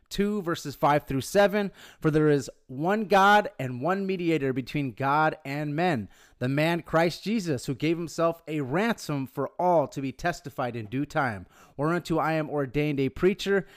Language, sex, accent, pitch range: English, male, American, 130-170 Hz